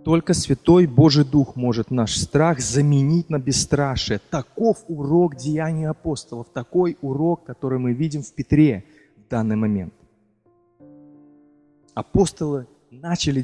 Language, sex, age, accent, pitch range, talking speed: Russian, male, 20-39, native, 125-160 Hz, 115 wpm